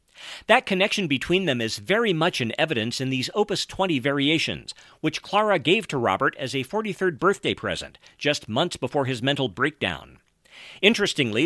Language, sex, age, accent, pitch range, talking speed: English, male, 50-69, American, 120-185 Hz, 160 wpm